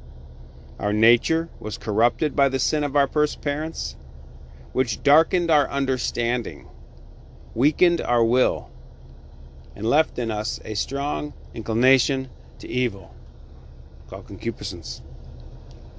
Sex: male